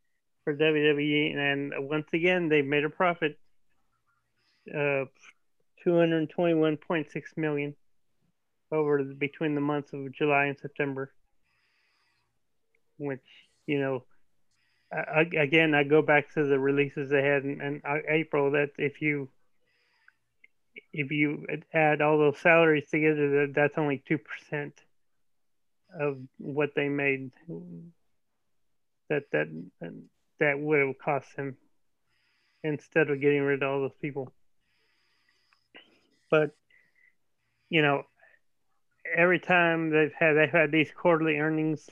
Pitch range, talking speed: 140-155 Hz, 120 wpm